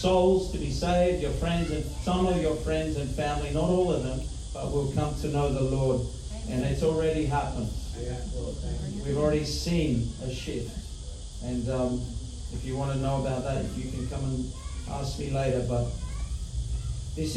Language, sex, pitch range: English, male, 95-135 Hz